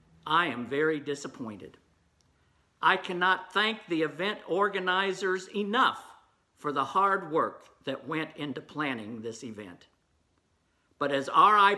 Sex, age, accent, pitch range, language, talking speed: male, 50-69, American, 150-200 Hz, Filipino, 120 wpm